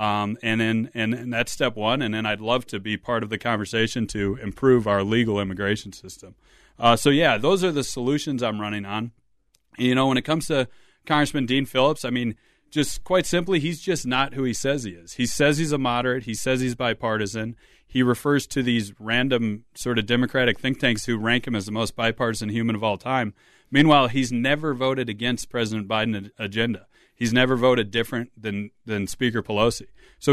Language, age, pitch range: English, 30-49, 110-130 Hz